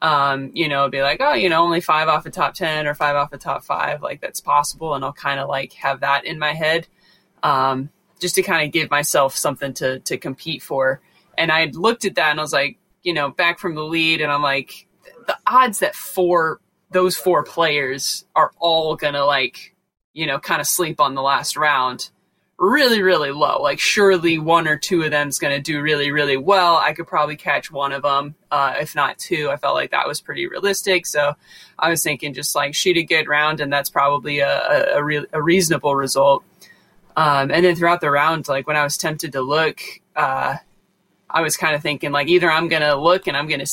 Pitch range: 140-175 Hz